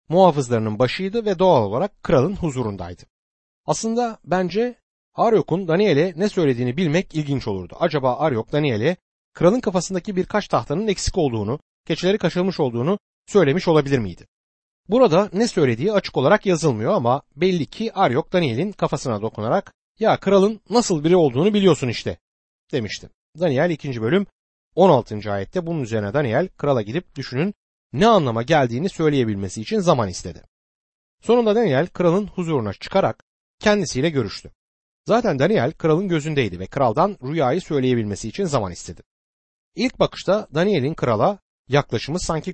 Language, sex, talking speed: Turkish, male, 135 wpm